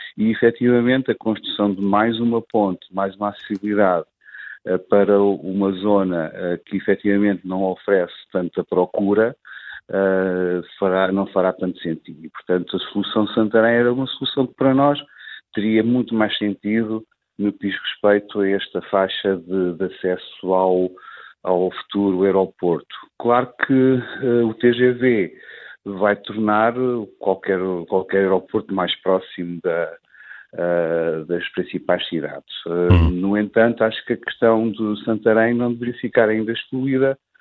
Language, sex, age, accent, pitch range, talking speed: Portuguese, male, 50-69, Portuguese, 95-115 Hz, 130 wpm